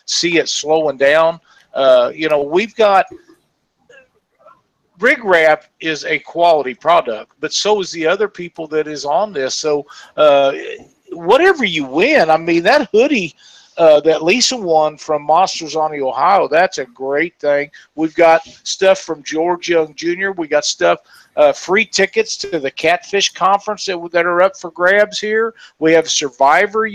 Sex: male